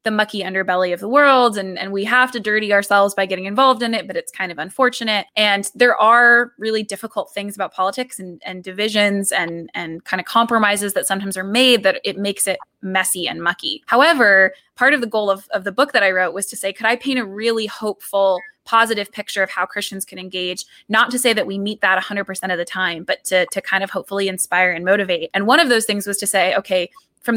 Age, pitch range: 20-39, 190-230 Hz